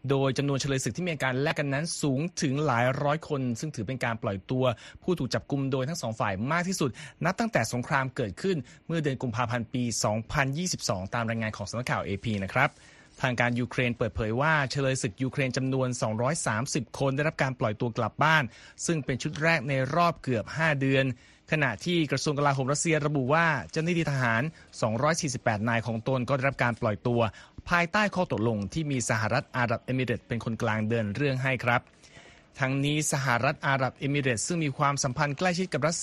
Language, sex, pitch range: Thai, male, 120-150 Hz